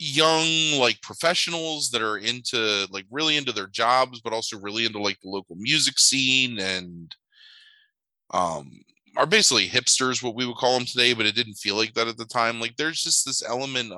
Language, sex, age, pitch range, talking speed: English, male, 20-39, 95-125 Hz, 195 wpm